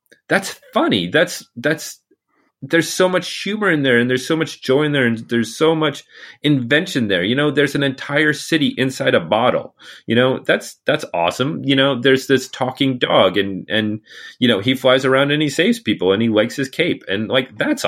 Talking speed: 210 wpm